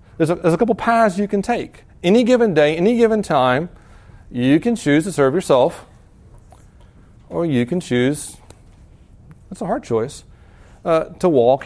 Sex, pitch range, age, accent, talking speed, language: male, 130-185 Hz, 40-59, American, 170 wpm, English